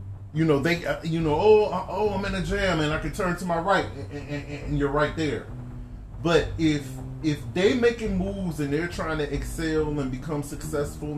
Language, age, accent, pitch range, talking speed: English, 30-49, American, 125-160 Hz, 210 wpm